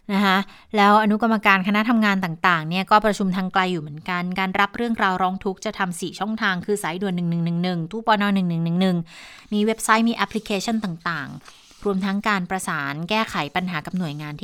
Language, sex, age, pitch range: Thai, female, 20-39, 175-220 Hz